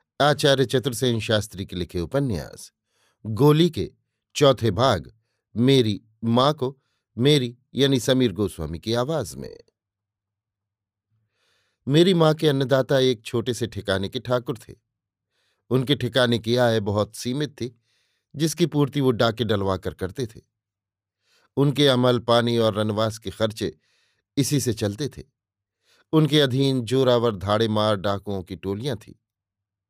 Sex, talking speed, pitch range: male, 130 wpm, 105-135 Hz